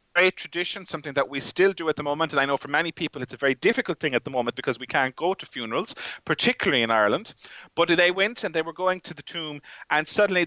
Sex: male